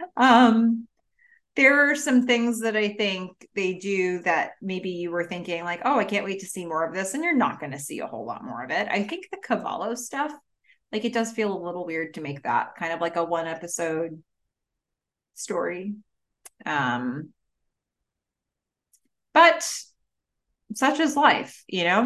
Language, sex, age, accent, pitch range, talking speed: English, female, 30-49, American, 165-245 Hz, 180 wpm